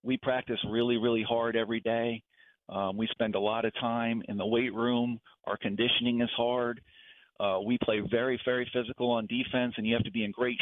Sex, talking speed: male, 210 wpm